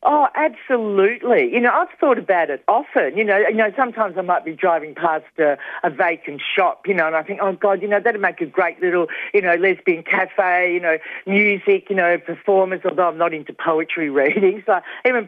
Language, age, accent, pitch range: English, 50-69, Australian, 170-215 Hz